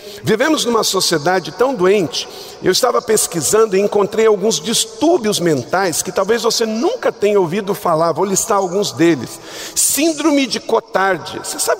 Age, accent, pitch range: 50-69, Brazilian, 150-230 Hz